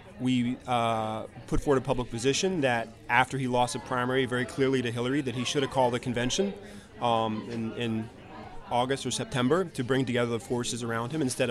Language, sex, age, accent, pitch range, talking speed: English, male, 30-49, American, 115-135 Hz, 200 wpm